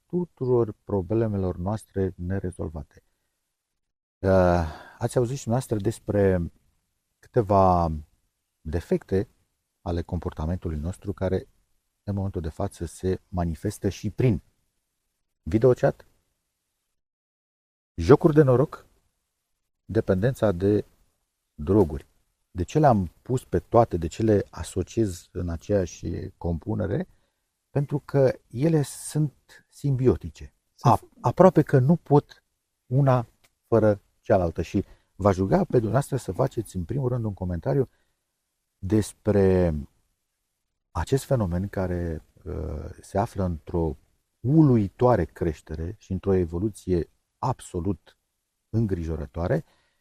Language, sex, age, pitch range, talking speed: Romanian, male, 50-69, 90-115 Hz, 95 wpm